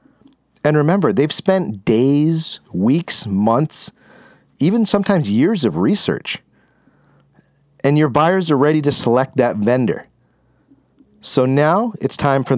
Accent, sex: American, male